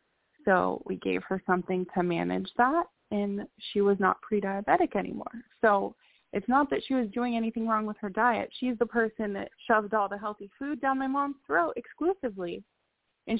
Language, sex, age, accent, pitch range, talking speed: English, female, 20-39, American, 185-230 Hz, 185 wpm